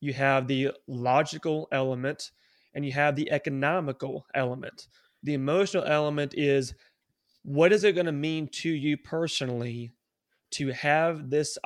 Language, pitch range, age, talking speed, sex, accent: English, 130-150 Hz, 30-49, 140 wpm, male, American